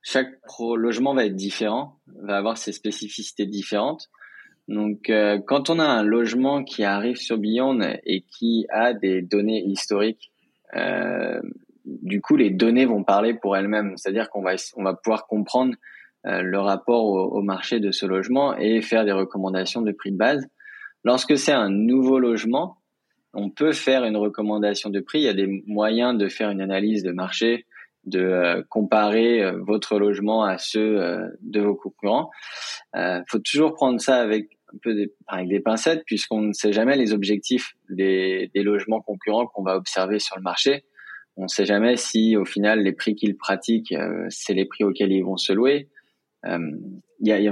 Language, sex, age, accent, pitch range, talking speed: French, male, 20-39, French, 100-120 Hz, 185 wpm